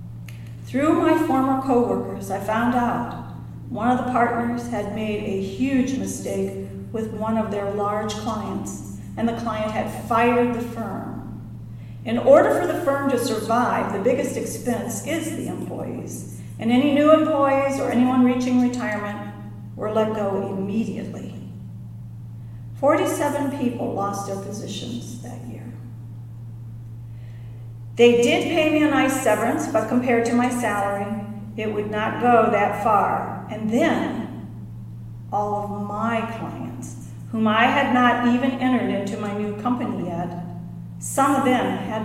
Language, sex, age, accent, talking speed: English, female, 40-59, American, 145 wpm